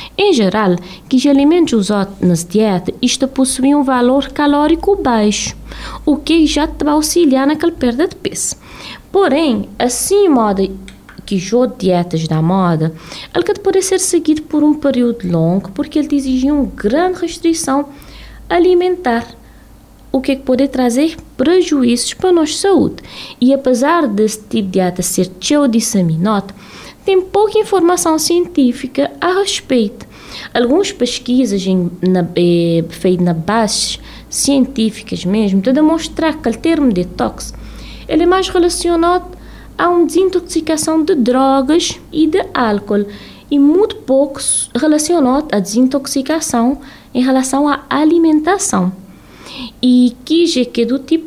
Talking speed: 130 wpm